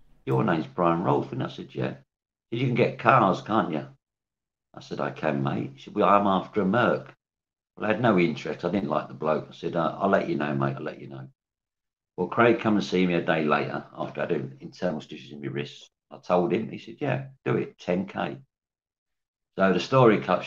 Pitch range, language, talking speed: 70-95 Hz, English, 230 wpm